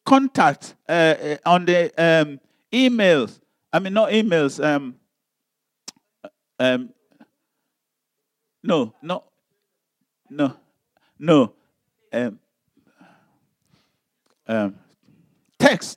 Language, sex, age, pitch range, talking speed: English, male, 50-69, 150-230 Hz, 70 wpm